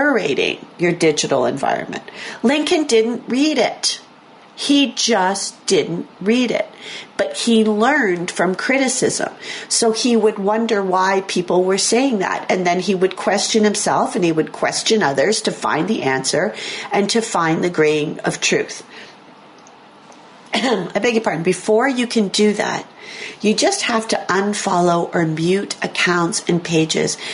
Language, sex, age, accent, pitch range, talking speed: English, female, 40-59, American, 175-230 Hz, 145 wpm